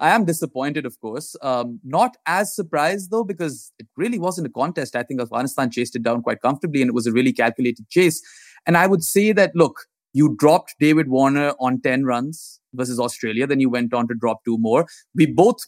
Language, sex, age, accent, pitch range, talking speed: English, male, 20-39, Indian, 125-165 Hz, 215 wpm